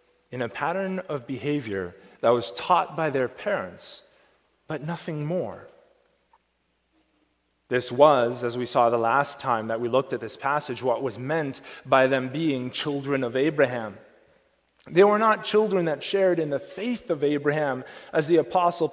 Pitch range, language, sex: 130-195 Hz, English, male